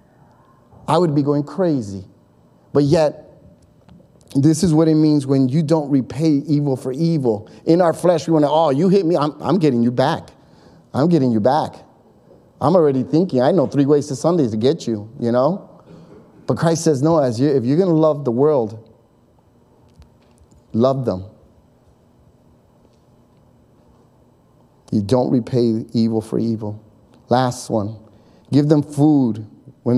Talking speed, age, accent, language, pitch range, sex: 160 wpm, 30-49, American, English, 115-150 Hz, male